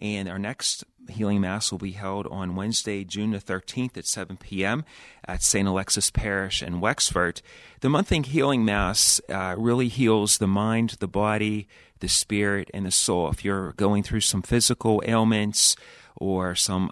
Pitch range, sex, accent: 95-110 Hz, male, American